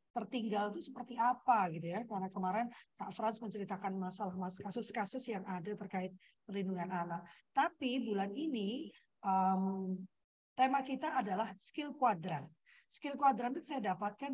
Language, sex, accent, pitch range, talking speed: Indonesian, female, native, 195-245 Hz, 140 wpm